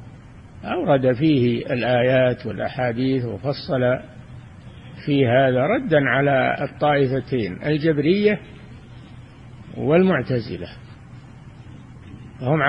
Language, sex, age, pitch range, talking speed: Arabic, male, 60-79, 125-175 Hz, 60 wpm